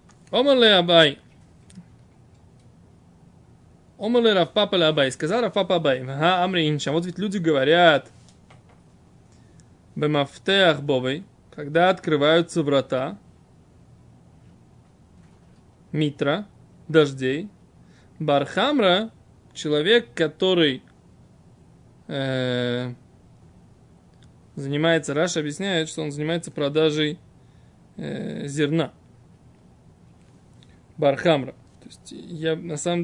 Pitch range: 145-180 Hz